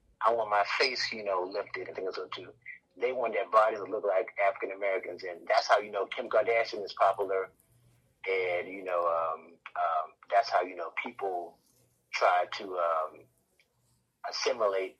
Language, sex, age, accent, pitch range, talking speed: English, male, 30-49, American, 90-115 Hz, 175 wpm